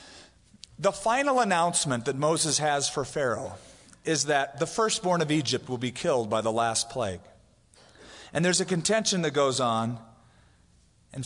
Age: 40-59